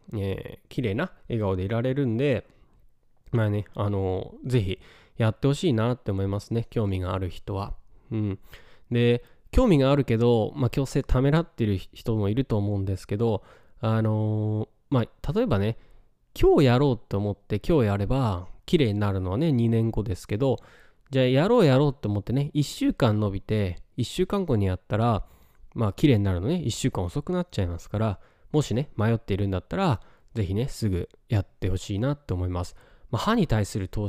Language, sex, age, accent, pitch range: Japanese, male, 20-39, native, 100-135 Hz